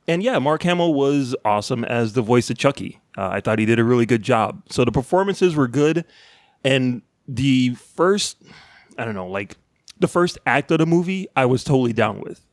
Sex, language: male, English